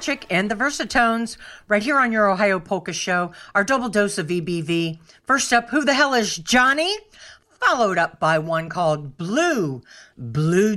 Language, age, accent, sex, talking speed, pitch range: English, 50-69, American, female, 160 wpm, 180-270 Hz